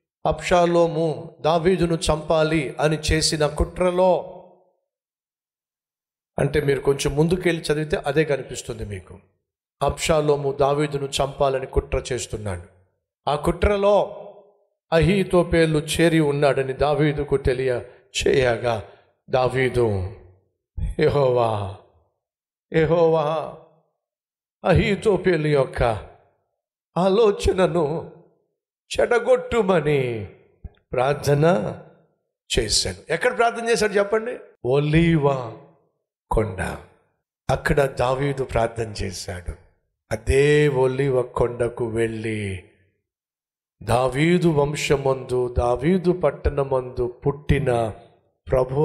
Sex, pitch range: male, 120-170 Hz